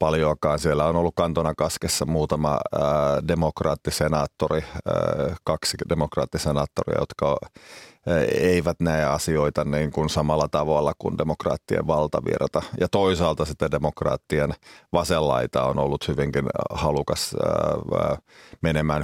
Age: 30-49